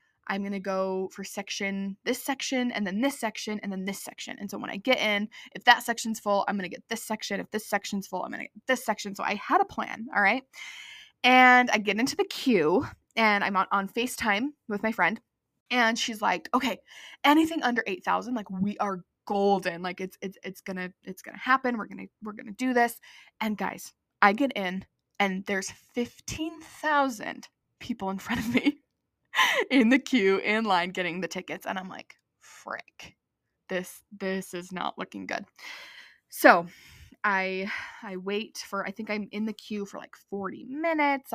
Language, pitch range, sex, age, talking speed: English, 195-250 Hz, female, 20-39, 195 wpm